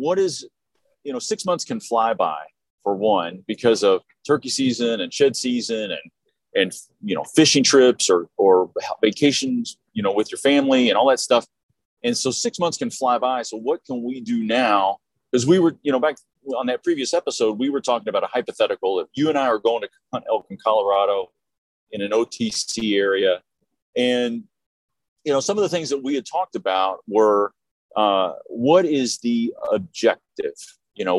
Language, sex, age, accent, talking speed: English, male, 40-59, American, 190 wpm